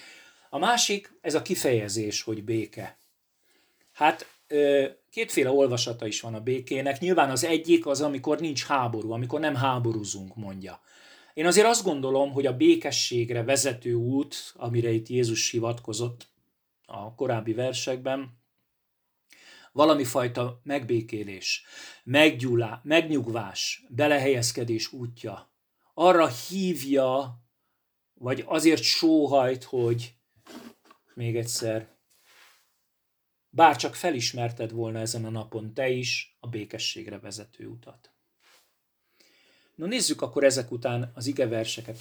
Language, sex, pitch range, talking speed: Hungarian, male, 115-140 Hz, 110 wpm